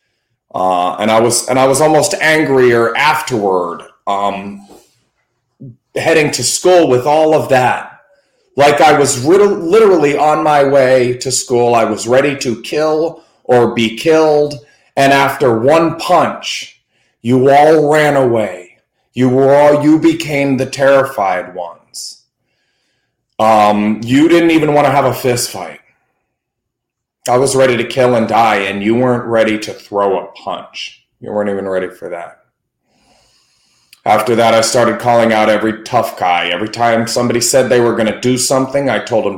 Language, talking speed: English, 160 wpm